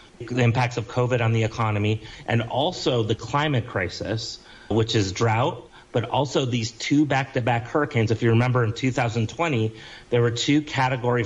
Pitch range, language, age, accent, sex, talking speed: 115-135 Hz, English, 30-49, American, male, 160 wpm